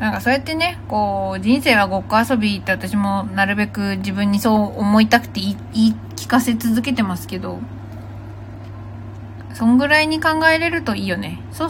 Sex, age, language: female, 20-39, Japanese